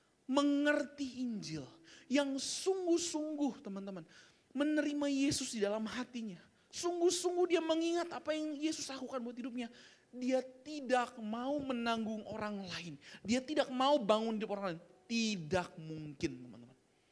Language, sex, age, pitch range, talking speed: Indonesian, male, 20-39, 165-255 Hz, 120 wpm